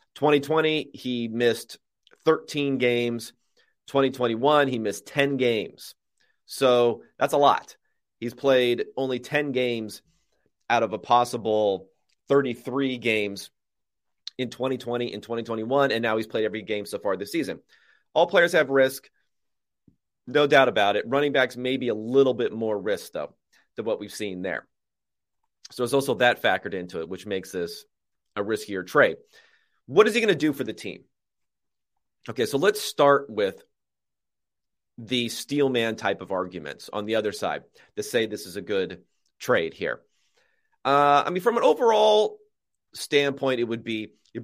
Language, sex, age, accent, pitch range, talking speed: English, male, 30-49, American, 120-150 Hz, 160 wpm